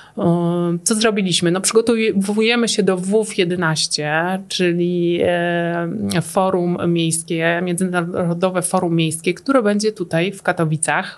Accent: native